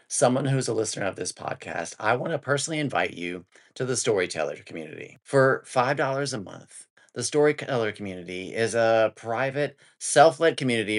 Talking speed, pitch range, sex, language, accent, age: 160 wpm, 95-130 Hz, male, English, American, 30-49